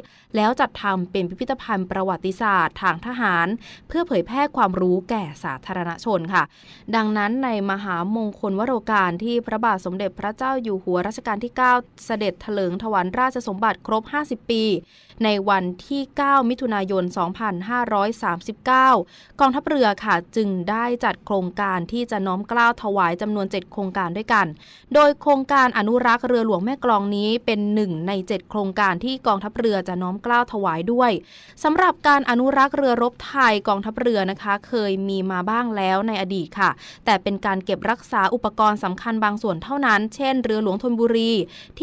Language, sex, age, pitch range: Thai, female, 20-39, 195-245 Hz